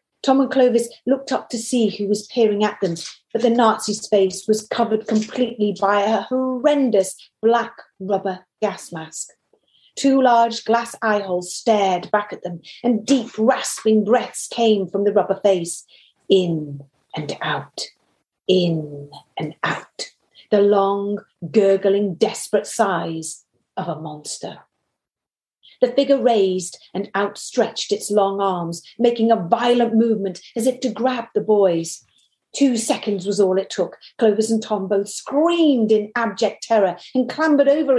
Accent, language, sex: British, English, female